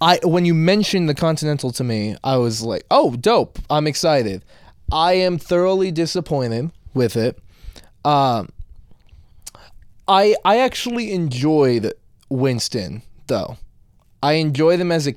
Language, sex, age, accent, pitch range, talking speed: English, male, 20-39, American, 115-155 Hz, 130 wpm